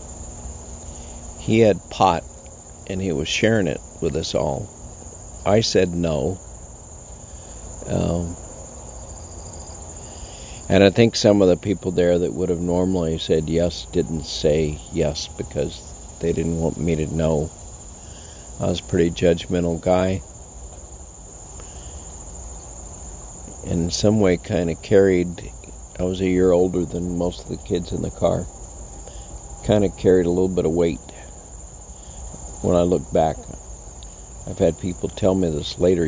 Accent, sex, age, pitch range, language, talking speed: American, male, 50-69, 75-90 Hz, English, 140 wpm